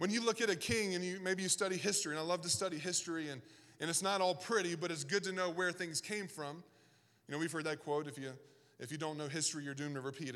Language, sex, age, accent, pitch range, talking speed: English, male, 20-39, American, 155-200 Hz, 290 wpm